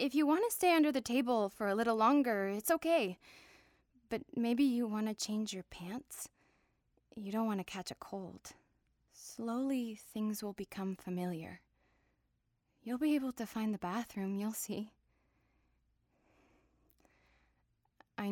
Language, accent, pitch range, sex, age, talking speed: English, American, 190-245 Hz, female, 20-39, 145 wpm